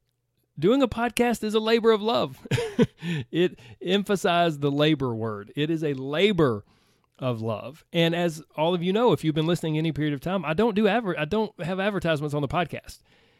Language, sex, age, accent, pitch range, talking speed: English, male, 30-49, American, 125-170 Hz, 185 wpm